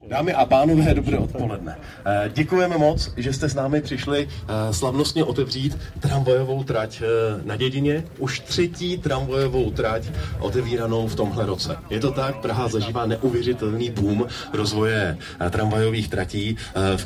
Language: Czech